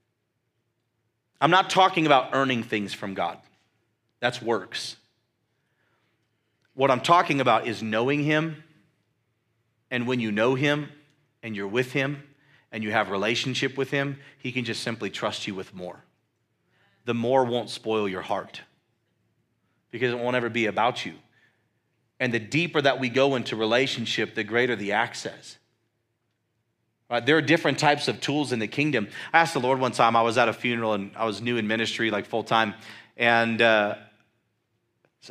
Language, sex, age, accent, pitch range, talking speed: English, male, 40-59, American, 110-135 Hz, 165 wpm